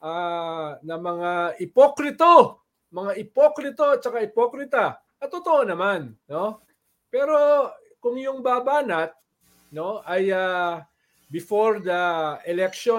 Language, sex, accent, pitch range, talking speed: English, male, Filipino, 180-265 Hz, 110 wpm